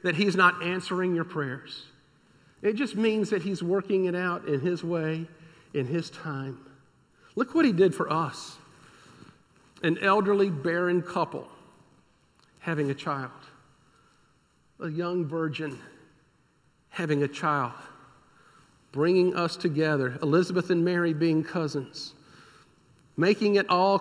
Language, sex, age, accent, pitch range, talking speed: English, male, 50-69, American, 135-175 Hz, 125 wpm